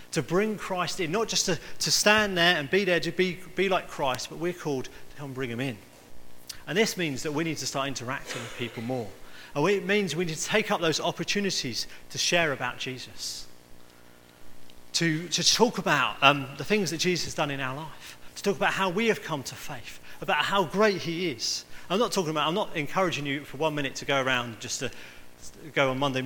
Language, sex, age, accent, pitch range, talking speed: English, male, 30-49, British, 120-165 Hz, 230 wpm